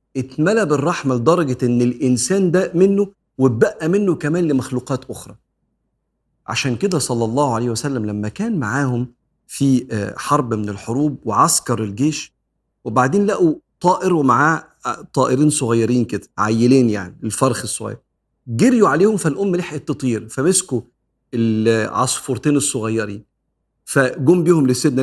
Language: Arabic